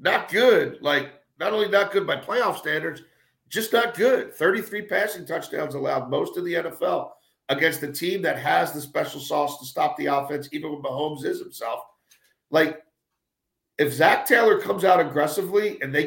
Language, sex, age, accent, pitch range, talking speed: English, male, 50-69, American, 150-205 Hz, 175 wpm